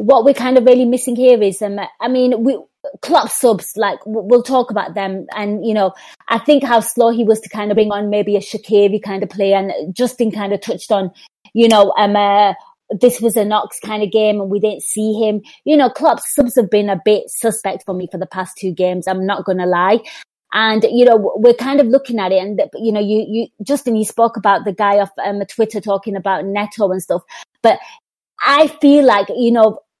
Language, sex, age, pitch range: English, female, 20-39, 205-245 Hz